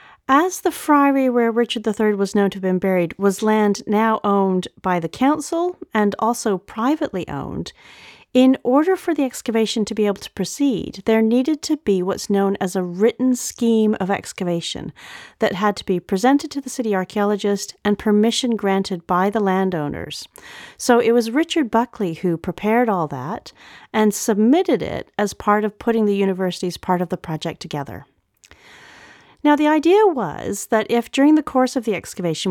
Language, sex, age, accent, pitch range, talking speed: English, female, 40-59, American, 185-240 Hz, 175 wpm